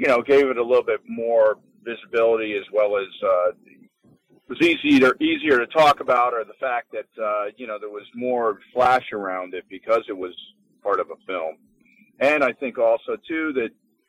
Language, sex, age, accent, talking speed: English, male, 40-59, American, 200 wpm